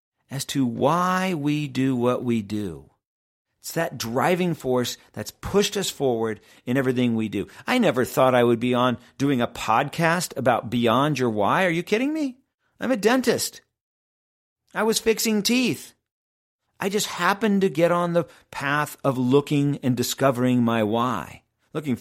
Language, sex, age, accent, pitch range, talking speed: English, male, 50-69, American, 125-185 Hz, 165 wpm